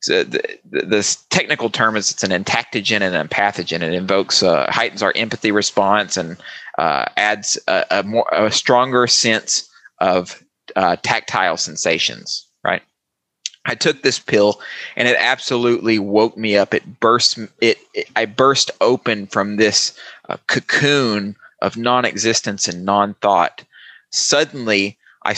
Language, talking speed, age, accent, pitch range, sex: English, 150 wpm, 30-49, American, 105-130 Hz, male